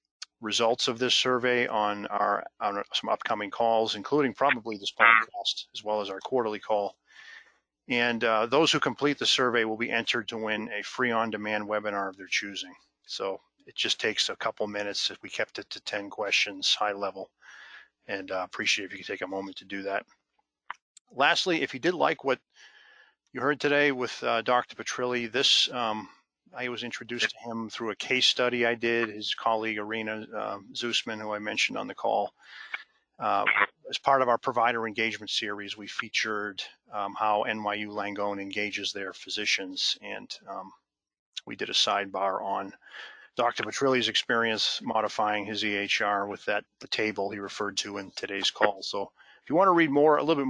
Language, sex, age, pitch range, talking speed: English, male, 40-59, 105-120 Hz, 185 wpm